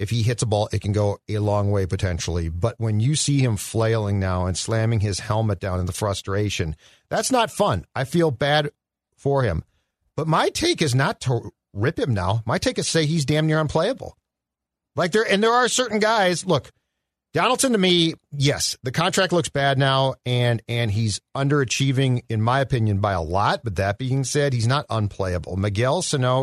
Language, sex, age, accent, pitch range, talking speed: English, male, 40-59, American, 105-150 Hz, 200 wpm